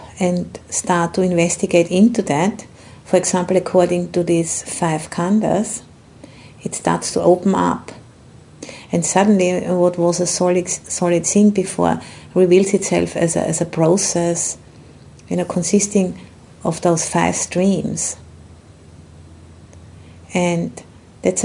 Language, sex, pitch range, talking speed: English, female, 170-190 Hz, 120 wpm